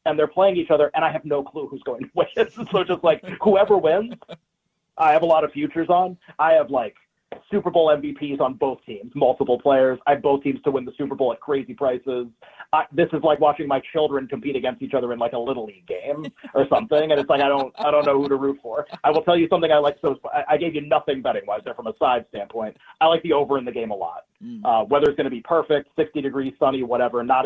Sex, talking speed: male, 255 wpm